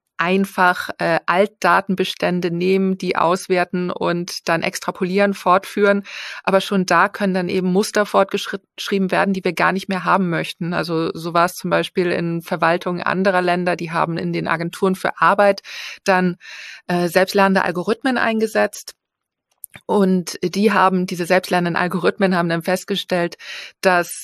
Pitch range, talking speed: 175-195 Hz, 145 wpm